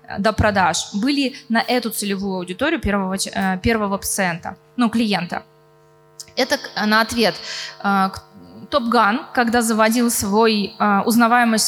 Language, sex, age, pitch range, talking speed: Russian, female, 20-39, 210-255 Hz, 105 wpm